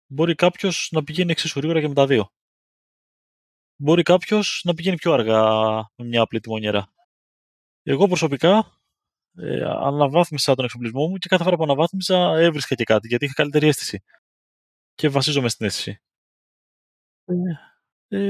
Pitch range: 120-165 Hz